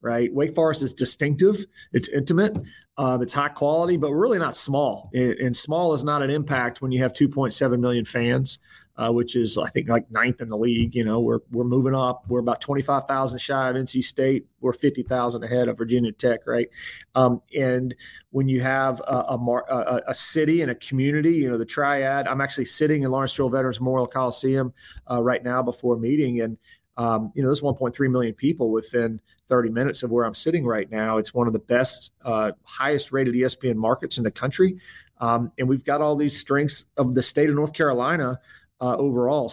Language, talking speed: English, 200 wpm